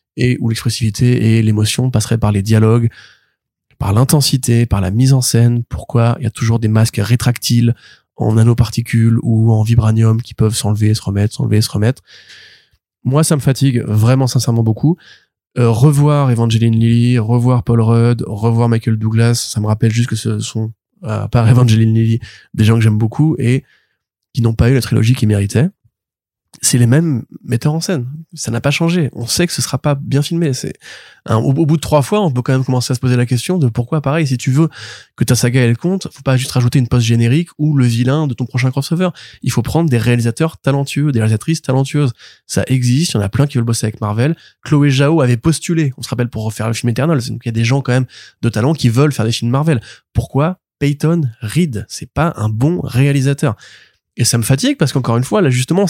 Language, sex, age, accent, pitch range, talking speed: French, male, 20-39, French, 115-140 Hz, 220 wpm